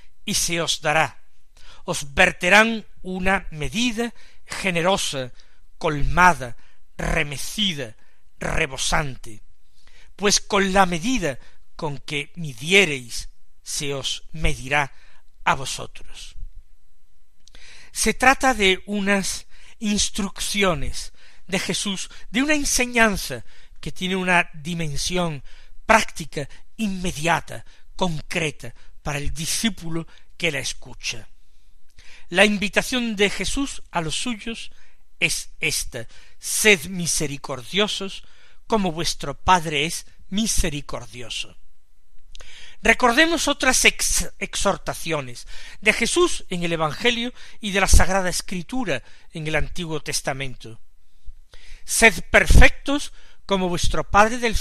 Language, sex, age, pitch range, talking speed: Spanish, male, 60-79, 145-210 Hz, 95 wpm